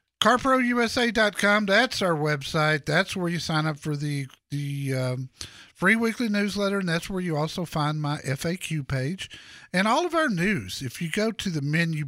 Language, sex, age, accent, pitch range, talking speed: English, male, 50-69, American, 130-175 Hz, 180 wpm